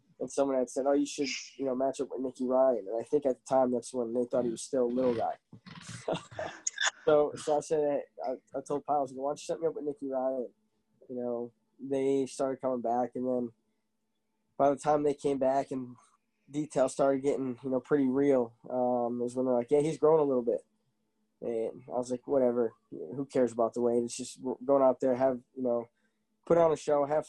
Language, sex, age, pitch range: English, male, 20-39, 125-140 Hz